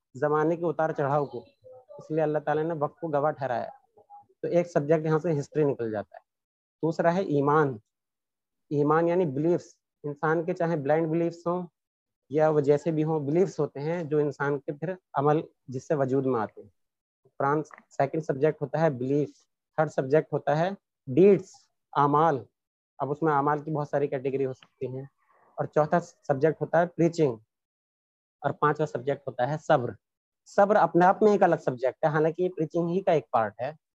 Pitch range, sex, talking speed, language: 140-165 Hz, male, 185 wpm, Urdu